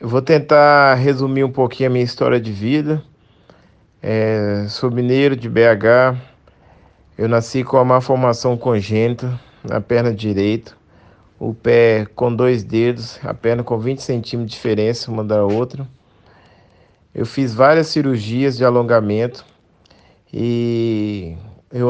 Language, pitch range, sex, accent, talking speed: Portuguese, 115-130 Hz, male, Brazilian, 130 wpm